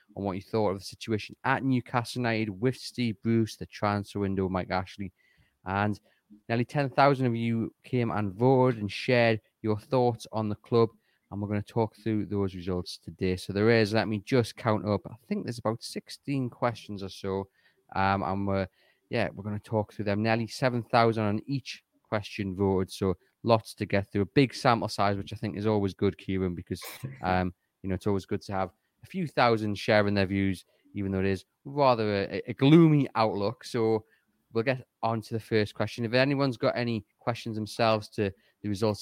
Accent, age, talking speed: British, 20-39, 200 wpm